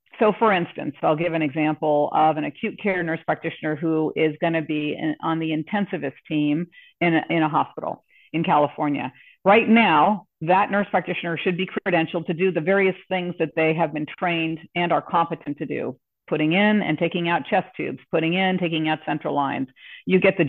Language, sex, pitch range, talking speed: English, female, 155-190 Hz, 195 wpm